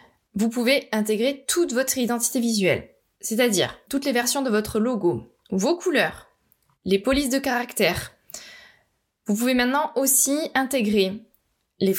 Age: 20-39